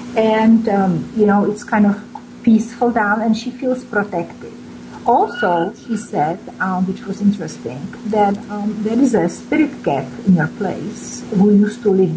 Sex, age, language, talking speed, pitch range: female, 50-69, English, 170 wpm, 185-230 Hz